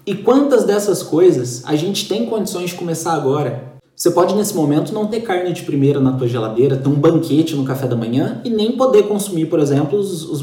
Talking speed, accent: 215 wpm, Brazilian